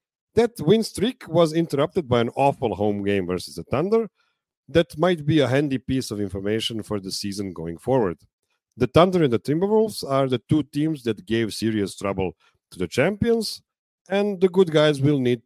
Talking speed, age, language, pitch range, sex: 185 wpm, 50-69, English, 100-150 Hz, male